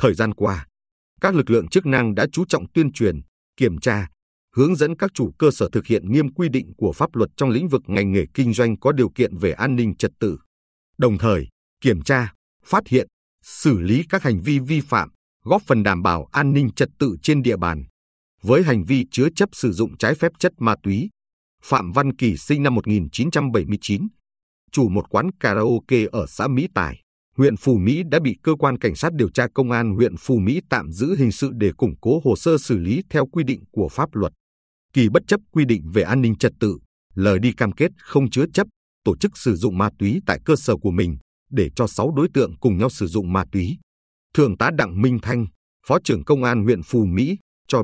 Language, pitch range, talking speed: Vietnamese, 100-140 Hz, 225 wpm